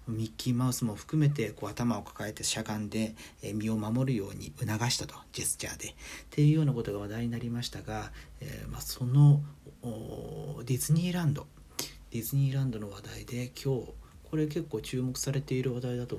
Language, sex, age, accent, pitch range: Japanese, male, 40-59, native, 115-155 Hz